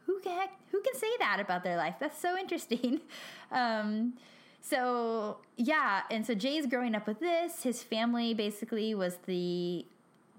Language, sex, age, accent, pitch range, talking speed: English, female, 10-29, American, 185-255 Hz, 145 wpm